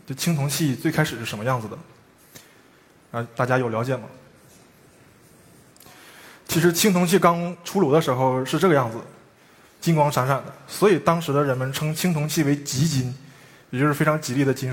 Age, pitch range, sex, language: 20-39, 125-165 Hz, male, Chinese